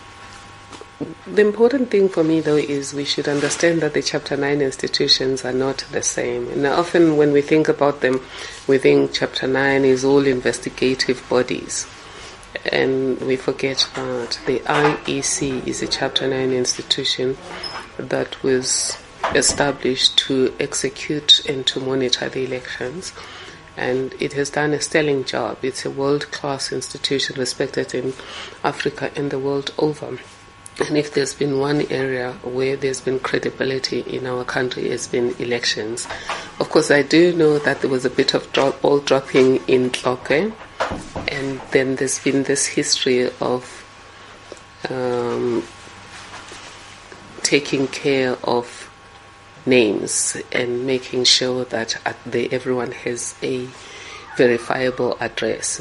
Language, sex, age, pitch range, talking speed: English, female, 30-49, 125-140 Hz, 135 wpm